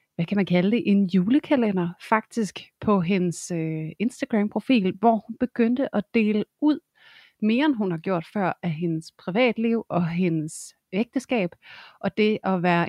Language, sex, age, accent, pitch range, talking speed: Danish, female, 30-49, native, 175-210 Hz, 165 wpm